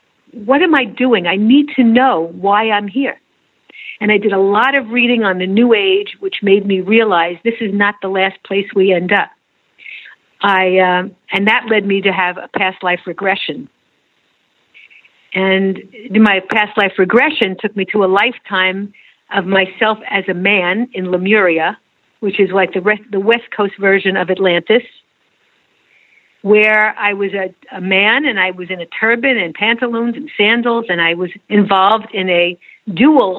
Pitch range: 190-220 Hz